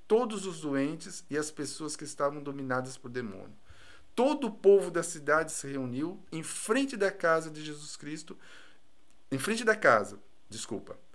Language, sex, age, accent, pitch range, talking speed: Portuguese, male, 50-69, Brazilian, 130-190 Hz, 160 wpm